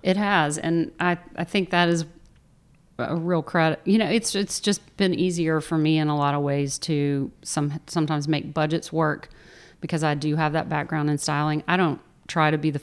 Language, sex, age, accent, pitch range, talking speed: English, female, 40-59, American, 145-170 Hz, 210 wpm